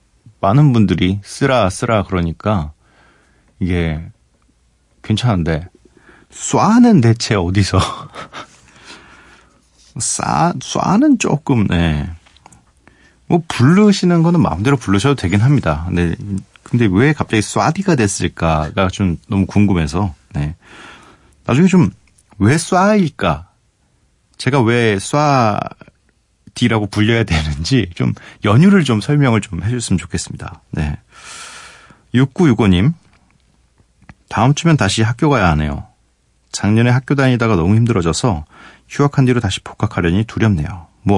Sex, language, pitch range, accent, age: male, Korean, 85-130 Hz, native, 40-59